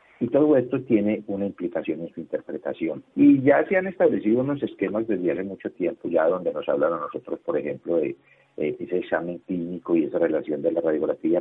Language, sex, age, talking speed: Spanish, male, 50-69, 205 wpm